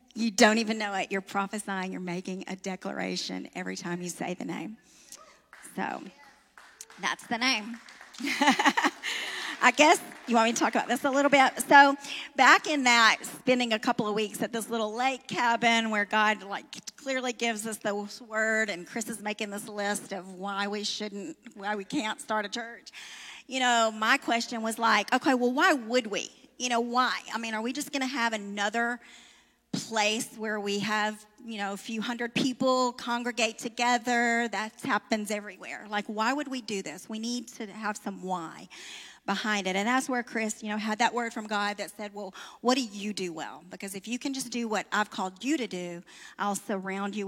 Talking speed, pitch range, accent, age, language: 200 wpm, 200-245 Hz, American, 40-59, English